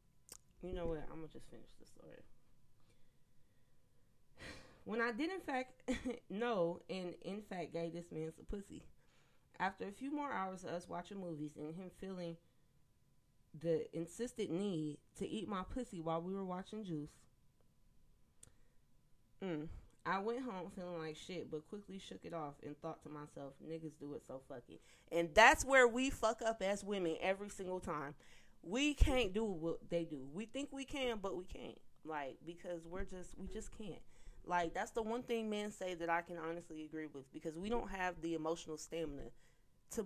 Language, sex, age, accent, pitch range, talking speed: English, female, 20-39, American, 155-210 Hz, 180 wpm